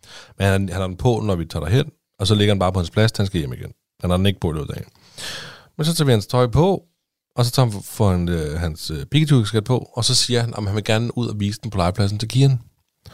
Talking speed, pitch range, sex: 295 wpm, 90-120 Hz, male